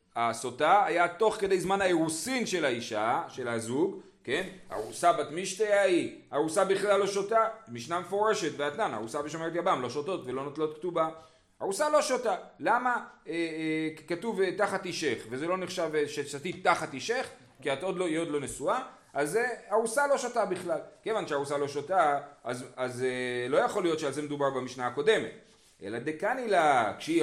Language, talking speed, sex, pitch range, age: Hebrew, 165 wpm, male, 145-210 Hz, 30-49